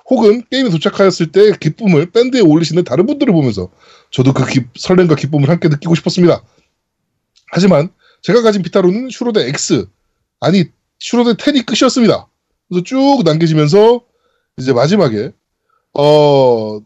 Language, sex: Korean, male